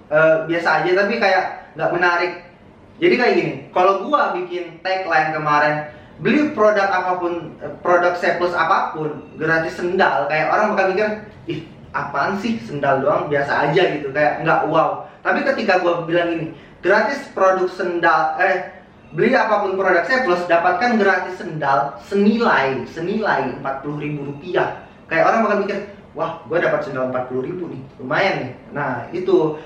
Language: Indonesian